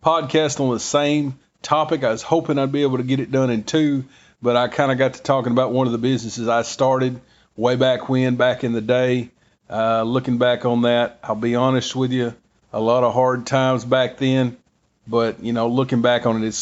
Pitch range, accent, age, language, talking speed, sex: 120-140 Hz, American, 40-59, English, 230 wpm, male